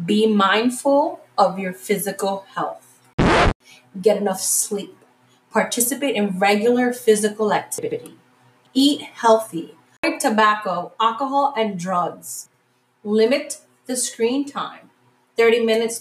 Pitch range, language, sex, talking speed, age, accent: 190-235 Hz, English, female, 100 wpm, 30-49, American